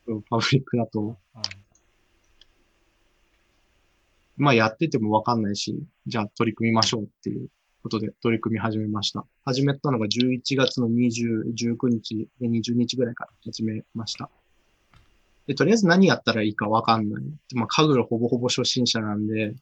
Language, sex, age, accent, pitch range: Japanese, male, 20-39, native, 105-125 Hz